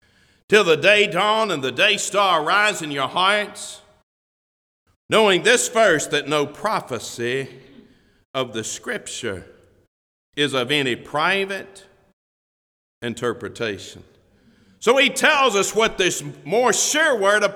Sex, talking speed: male, 125 wpm